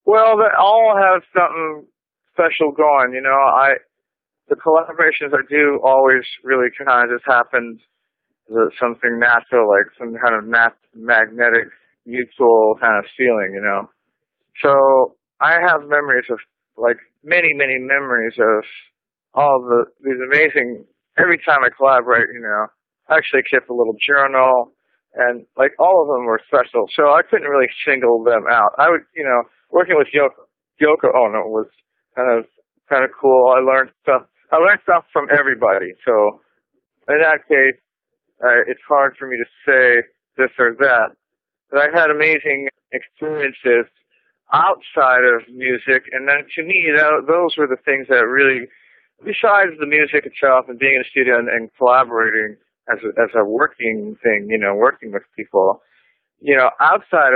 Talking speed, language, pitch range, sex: 165 wpm, English, 120-155 Hz, male